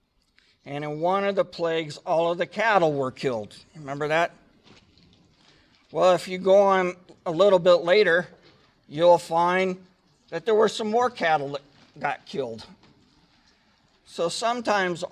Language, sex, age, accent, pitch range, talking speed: English, male, 50-69, American, 135-180 Hz, 145 wpm